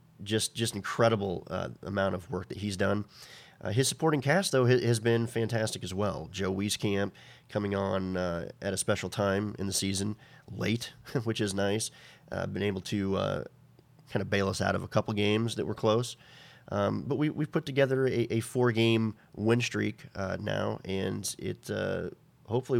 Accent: American